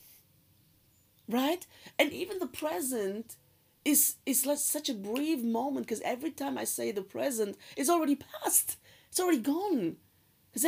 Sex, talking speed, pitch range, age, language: female, 145 wpm, 150-255 Hz, 50-69, English